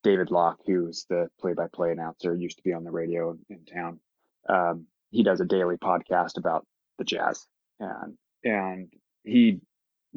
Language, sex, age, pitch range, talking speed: English, male, 20-39, 90-115 Hz, 160 wpm